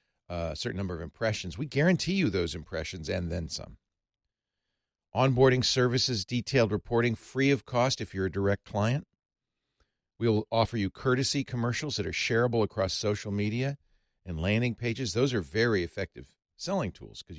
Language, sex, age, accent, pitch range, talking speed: English, male, 50-69, American, 95-130 Hz, 160 wpm